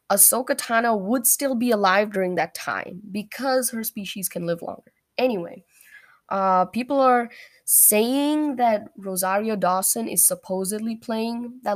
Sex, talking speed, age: female, 140 wpm, 10-29